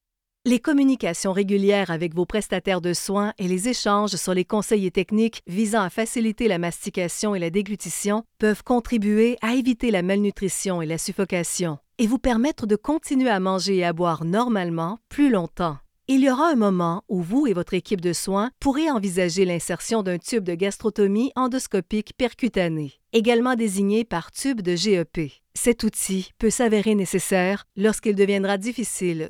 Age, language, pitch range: 50-69, French, 185-235 Hz